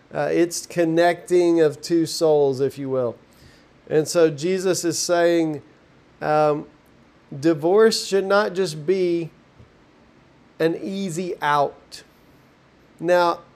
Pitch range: 155-185 Hz